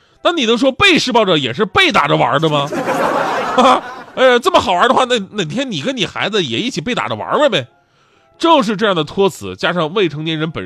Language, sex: Chinese, male